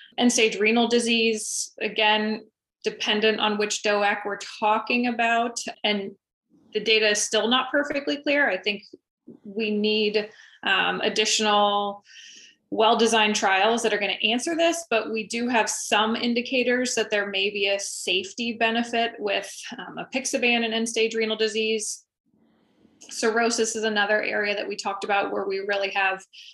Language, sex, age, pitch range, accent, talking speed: English, female, 20-39, 200-230 Hz, American, 145 wpm